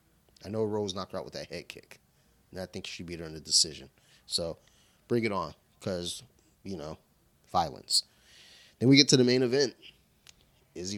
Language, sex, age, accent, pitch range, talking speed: English, male, 30-49, American, 85-110 Hz, 190 wpm